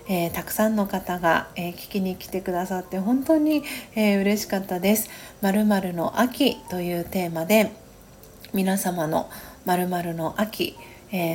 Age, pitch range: 40-59, 175-210 Hz